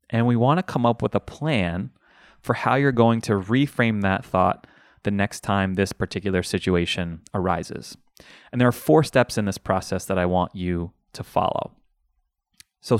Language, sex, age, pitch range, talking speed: English, male, 20-39, 95-115 Hz, 180 wpm